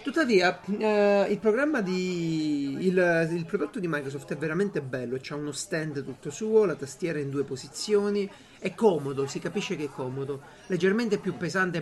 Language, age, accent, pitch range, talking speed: Italian, 40-59, native, 145-205 Hz, 170 wpm